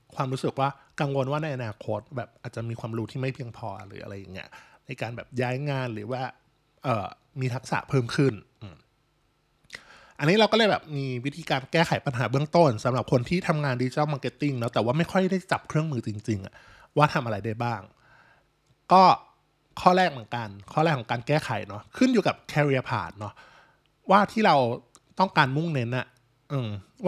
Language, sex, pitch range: Thai, male, 120-155 Hz